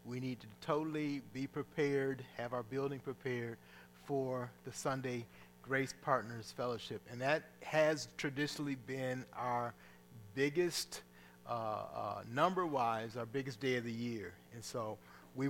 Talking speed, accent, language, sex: 135 wpm, American, English, male